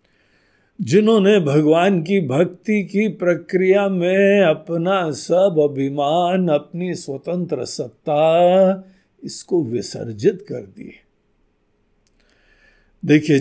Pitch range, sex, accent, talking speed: 135-205 Hz, male, native, 80 wpm